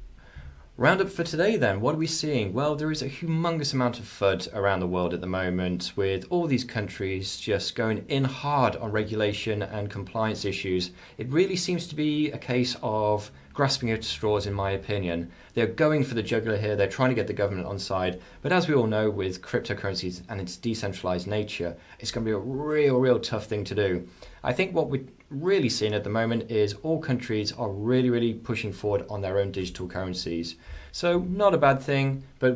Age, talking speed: 20-39, 210 wpm